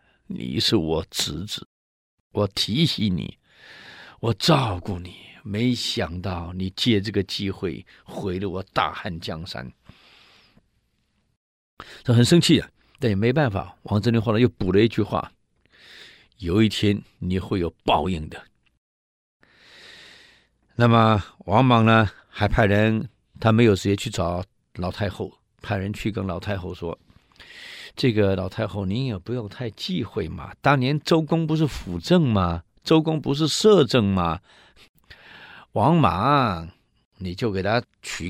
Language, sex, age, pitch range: Chinese, male, 50-69, 95-120 Hz